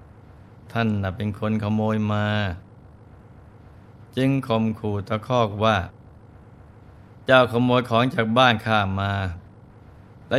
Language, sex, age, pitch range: Thai, male, 20-39, 100-120 Hz